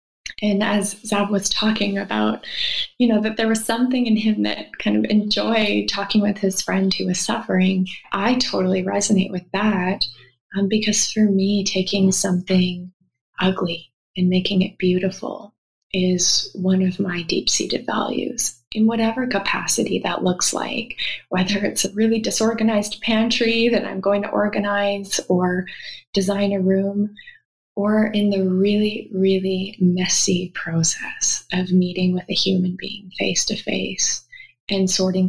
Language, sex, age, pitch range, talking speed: English, female, 20-39, 180-210 Hz, 145 wpm